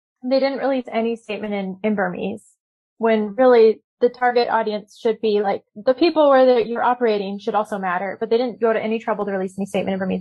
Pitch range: 200-245 Hz